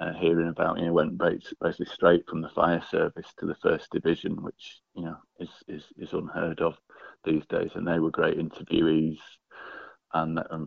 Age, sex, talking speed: 30-49, male, 185 wpm